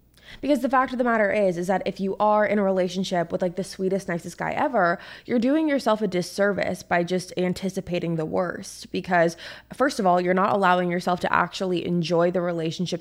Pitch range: 170-210 Hz